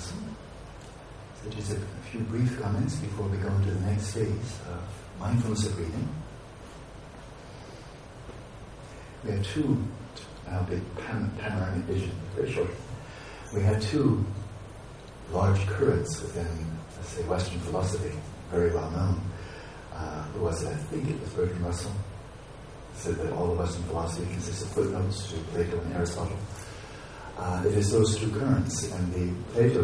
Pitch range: 90-110 Hz